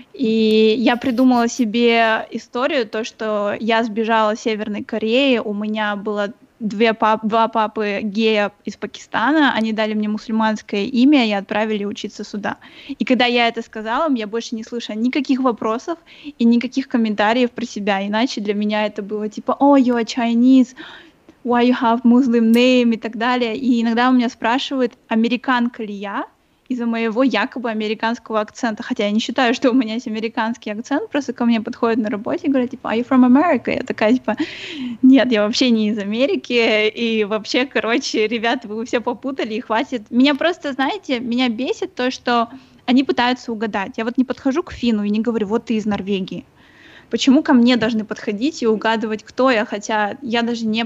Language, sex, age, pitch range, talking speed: Russian, female, 20-39, 220-255 Hz, 185 wpm